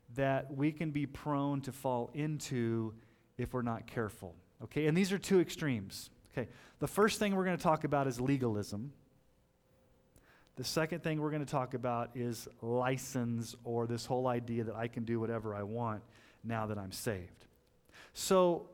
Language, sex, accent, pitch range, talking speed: English, male, American, 120-175 Hz, 175 wpm